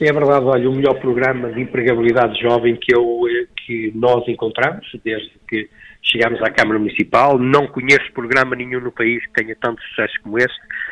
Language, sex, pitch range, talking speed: Portuguese, male, 120-140 Hz, 175 wpm